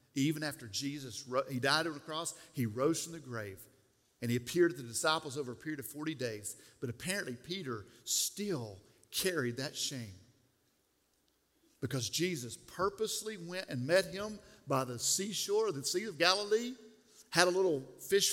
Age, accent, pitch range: 50-69, American, 125-185 Hz